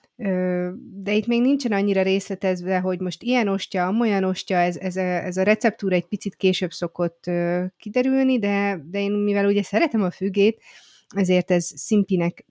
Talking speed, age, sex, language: 165 wpm, 30-49, female, Hungarian